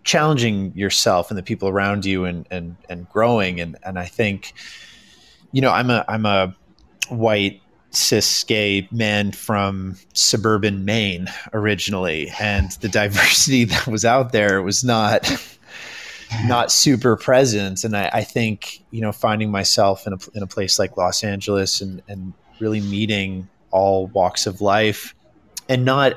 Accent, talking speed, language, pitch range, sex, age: American, 155 wpm, English, 95-110 Hz, male, 30-49